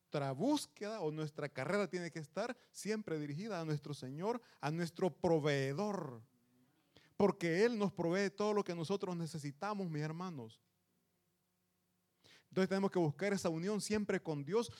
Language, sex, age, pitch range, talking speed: Italian, male, 30-49, 125-190 Hz, 140 wpm